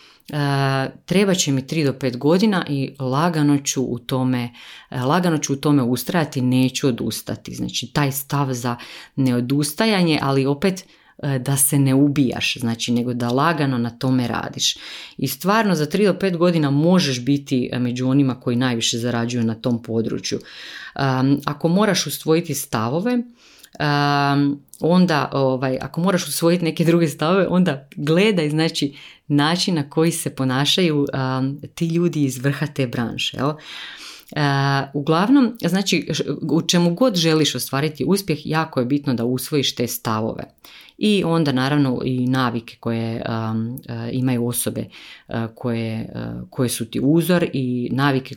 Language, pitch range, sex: Croatian, 125-160 Hz, female